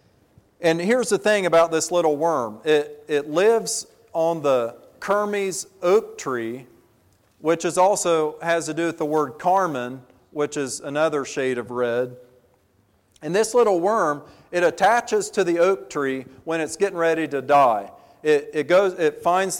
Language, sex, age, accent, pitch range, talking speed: English, male, 40-59, American, 140-185 Hz, 160 wpm